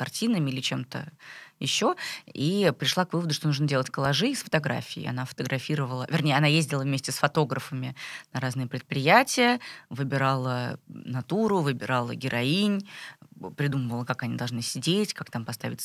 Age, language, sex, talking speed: 20-39, Russian, female, 140 wpm